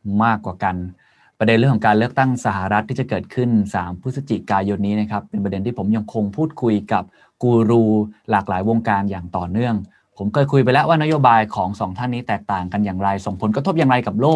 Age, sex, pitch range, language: 20-39, male, 105-125 Hz, Thai